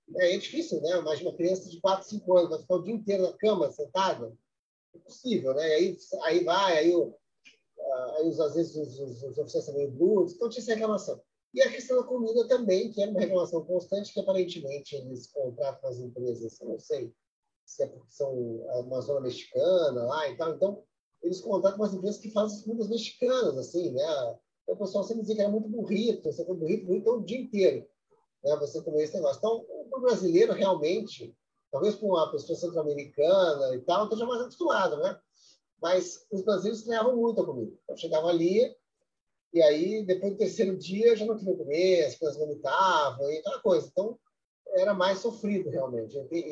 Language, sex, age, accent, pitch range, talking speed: English, male, 30-49, Brazilian, 160-230 Hz, 190 wpm